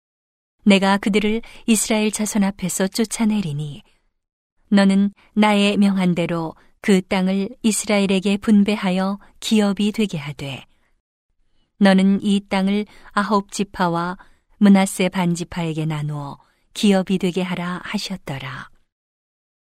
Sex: female